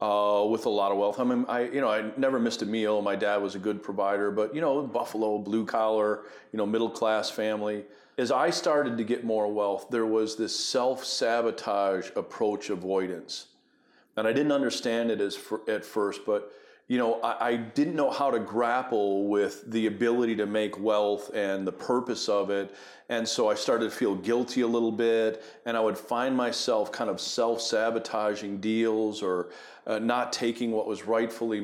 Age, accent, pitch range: 40-59, American, 105-120 Hz